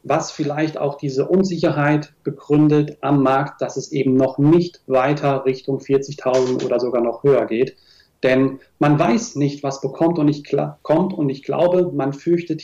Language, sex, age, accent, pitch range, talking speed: German, male, 40-59, German, 130-150 Hz, 170 wpm